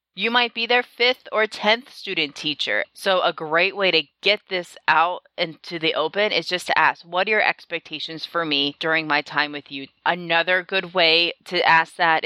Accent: American